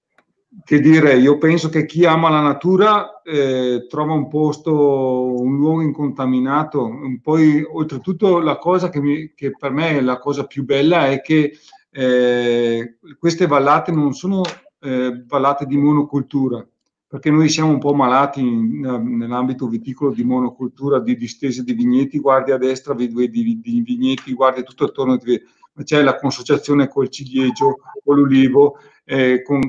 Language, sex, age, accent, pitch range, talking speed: Italian, male, 50-69, native, 130-155 Hz, 155 wpm